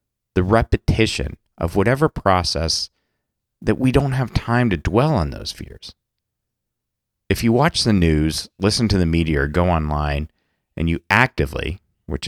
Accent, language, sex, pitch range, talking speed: American, English, male, 85-125 Hz, 145 wpm